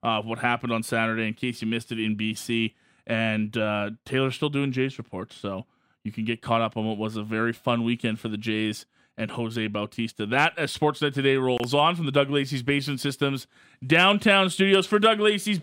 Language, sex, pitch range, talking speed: English, male, 125-165 Hz, 210 wpm